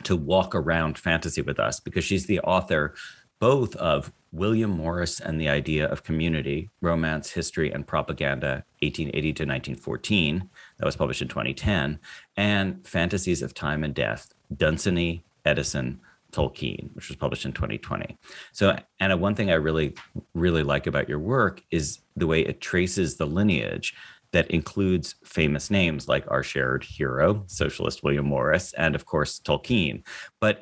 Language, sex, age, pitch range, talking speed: English, male, 40-59, 70-90 Hz, 155 wpm